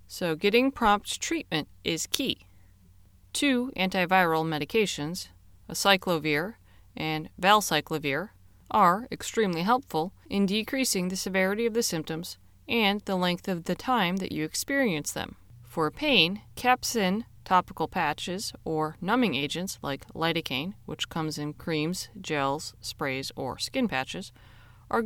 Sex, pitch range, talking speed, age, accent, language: female, 140-205 Hz, 125 wpm, 30-49, American, English